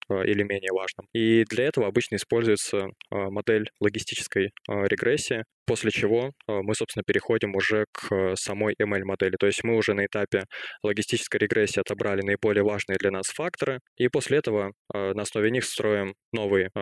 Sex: male